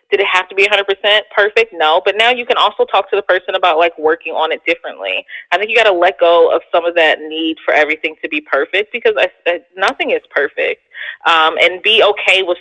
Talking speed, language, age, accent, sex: 250 wpm, English, 20-39, American, female